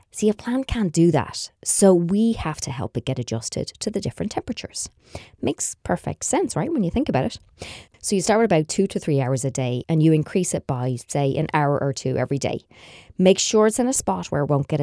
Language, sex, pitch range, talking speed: English, female, 130-185 Hz, 245 wpm